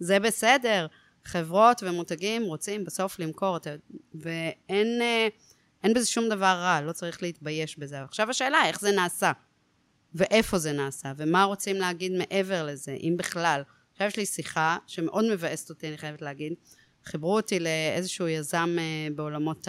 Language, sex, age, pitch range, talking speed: Hebrew, female, 30-49, 160-210 Hz, 140 wpm